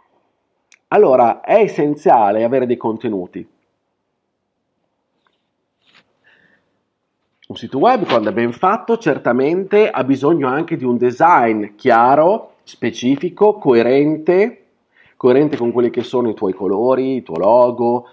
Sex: male